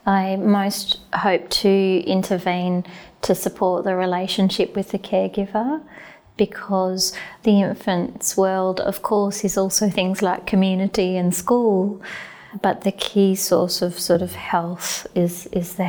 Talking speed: 135 wpm